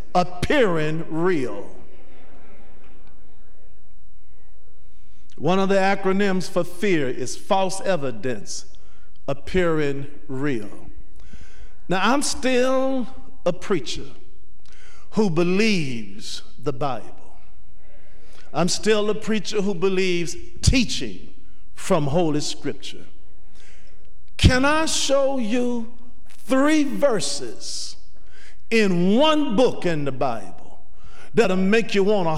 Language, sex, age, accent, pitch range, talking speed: English, male, 50-69, American, 145-215 Hz, 90 wpm